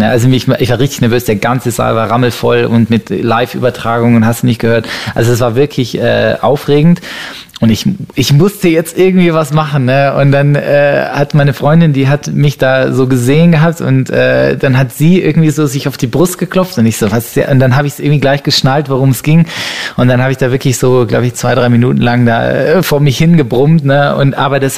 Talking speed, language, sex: 235 wpm, German, male